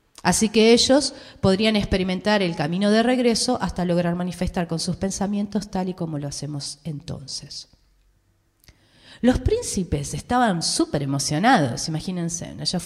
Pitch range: 150-220 Hz